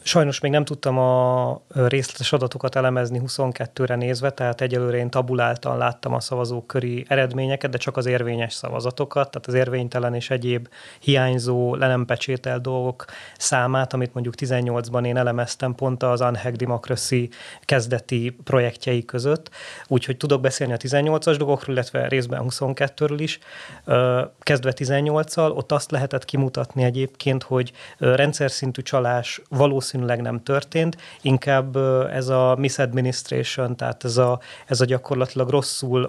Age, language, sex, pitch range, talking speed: 30-49, Hungarian, male, 125-135 Hz, 135 wpm